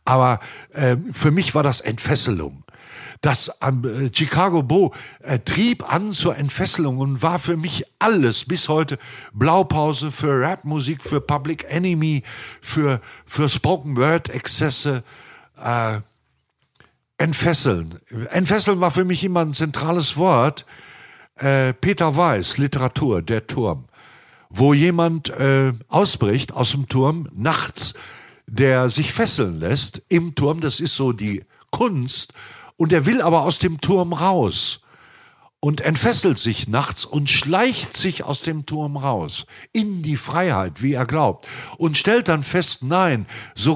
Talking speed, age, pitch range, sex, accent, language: 135 wpm, 60-79, 130-170 Hz, male, German, German